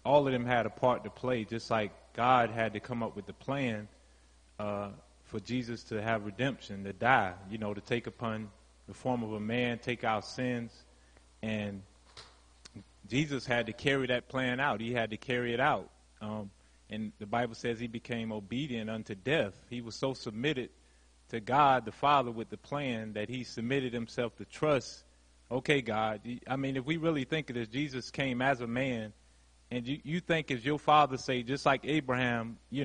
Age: 30-49